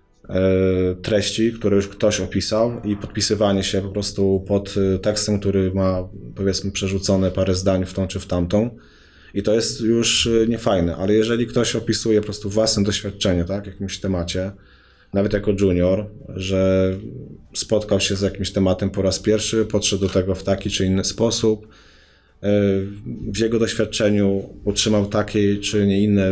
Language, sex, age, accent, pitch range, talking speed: English, male, 20-39, Polish, 95-105 Hz, 155 wpm